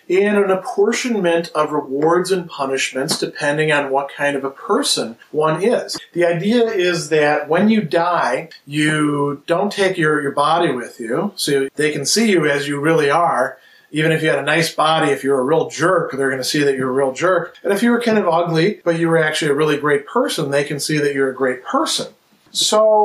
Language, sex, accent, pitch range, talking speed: English, male, American, 145-190 Hz, 220 wpm